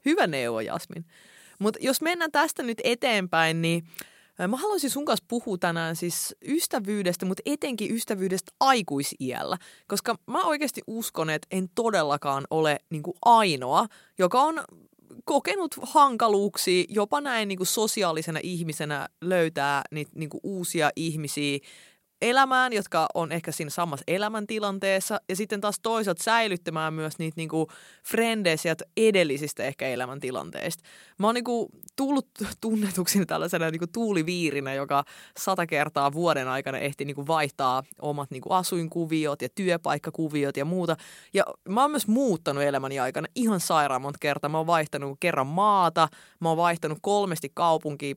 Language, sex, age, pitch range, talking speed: Finnish, female, 20-39, 150-215 Hz, 130 wpm